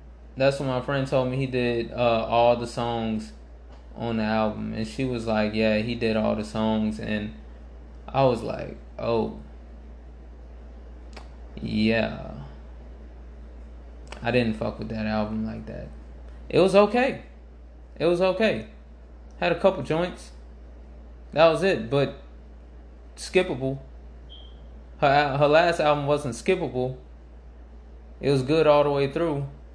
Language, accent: English, American